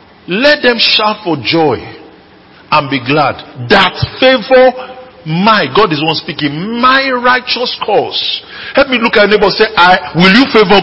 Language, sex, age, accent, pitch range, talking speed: English, male, 50-69, Nigerian, 115-180 Hz, 170 wpm